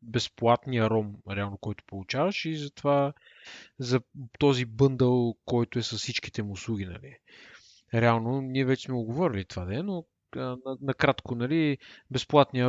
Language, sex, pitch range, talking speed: Bulgarian, male, 115-140 Hz, 145 wpm